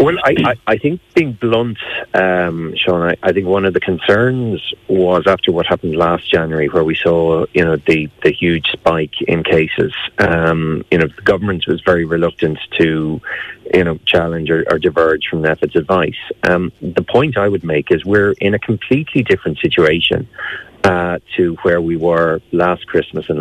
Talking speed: 180 wpm